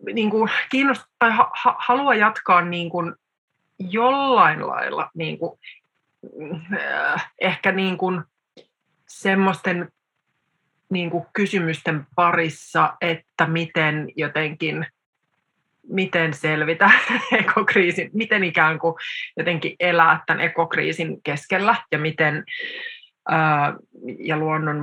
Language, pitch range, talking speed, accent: Finnish, 160-215 Hz, 95 wpm, native